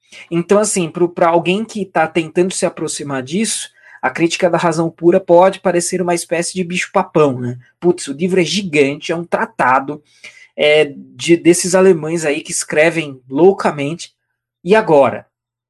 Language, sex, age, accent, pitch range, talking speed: Portuguese, male, 20-39, Brazilian, 145-190 Hz, 155 wpm